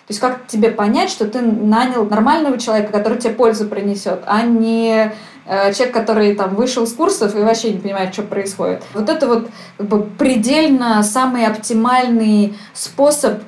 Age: 20-39